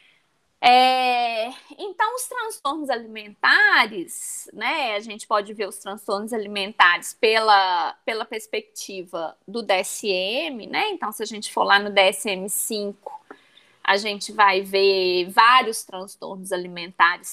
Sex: female